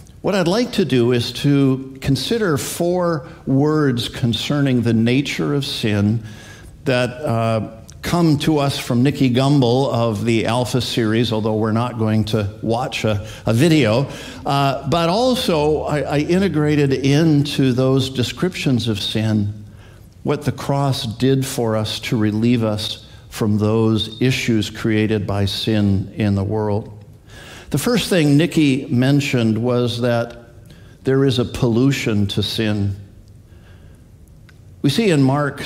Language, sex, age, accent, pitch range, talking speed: English, male, 50-69, American, 110-140 Hz, 140 wpm